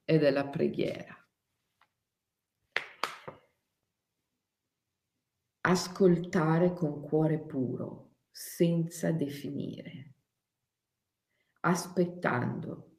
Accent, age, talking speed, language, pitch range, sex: native, 50-69, 45 wpm, Italian, 145-185 Hz, female